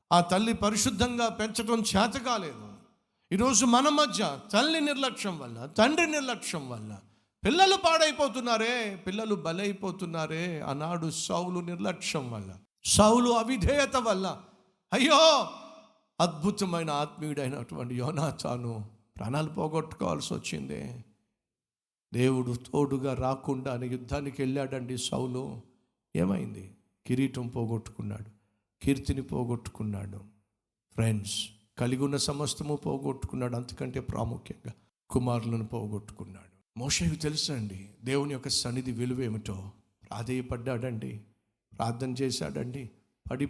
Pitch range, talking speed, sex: 115-170 Hz, 80 wpm, male